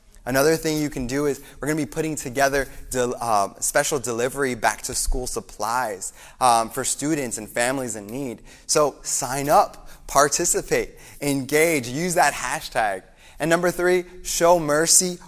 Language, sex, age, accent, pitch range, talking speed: English, male, 20-39, American, 140-180 Hz, 145 wpm